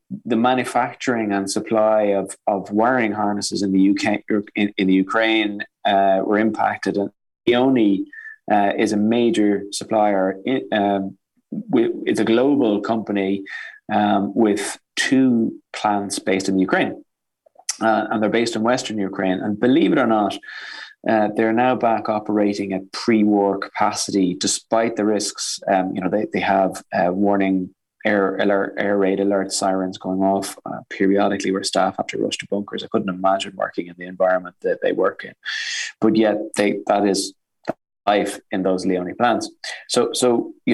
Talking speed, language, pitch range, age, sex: 165 wpm, English, 100-115 Hz, 20-39, male